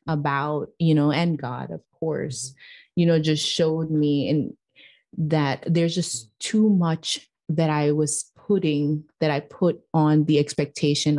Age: 30-49